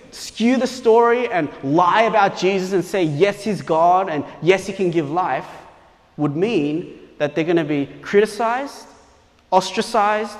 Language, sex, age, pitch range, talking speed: English, male, 30-49, 150-225 Hz, 155 wpm